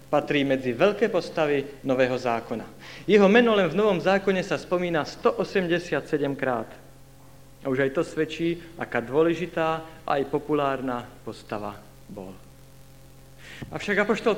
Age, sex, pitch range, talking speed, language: 50-69, male, 135-170 Hz, 125 wpm, Slovak